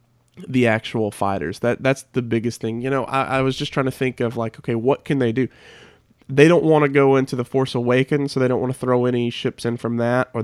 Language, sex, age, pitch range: English, male, 30-49, 115-135 Hz